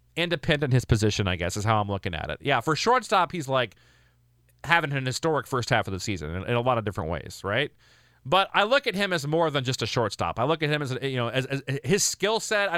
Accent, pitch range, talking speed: American, 105-155 Hz, 260 wpm